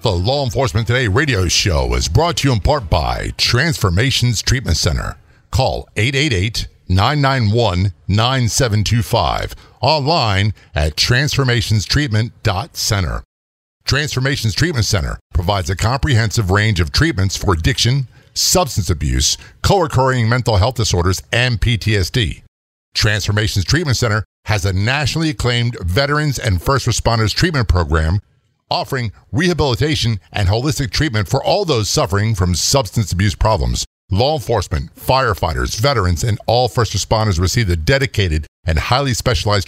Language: English